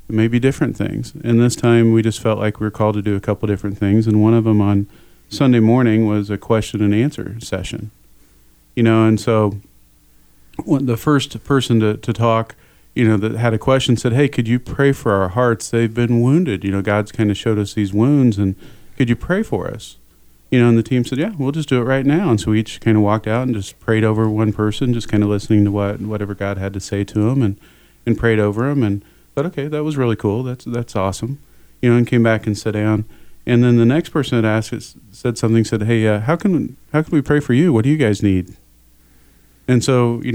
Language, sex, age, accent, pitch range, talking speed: English, male, 40-59, American, 105-125 Hz, 245 wpm